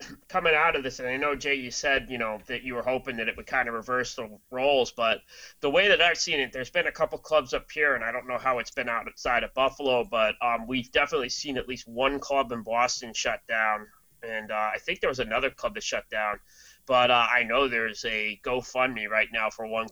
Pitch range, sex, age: 110-125 Hz, male, 20-39